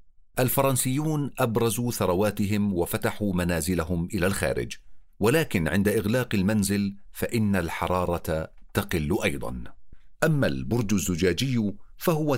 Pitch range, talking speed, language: 90-115 Hz, 90 wpm, Arabic